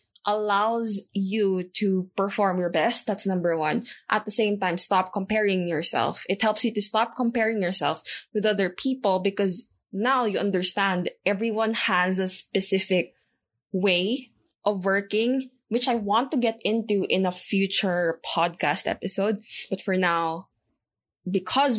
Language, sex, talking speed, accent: English, female, 145 wpm, Filipino